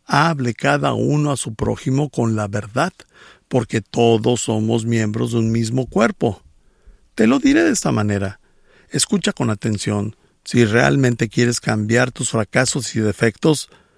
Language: English